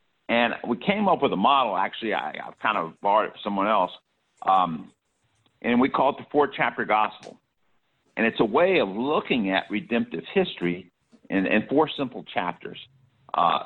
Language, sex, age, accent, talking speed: English, male, 50-69, American, 175 wpm